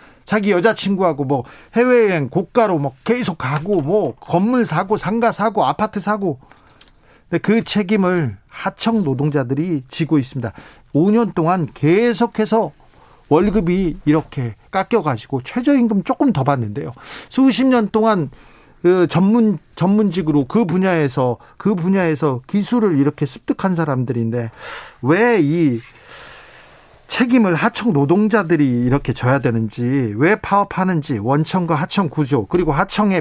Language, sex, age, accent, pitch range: Korean, male, 40-59, native, 140-205 Hz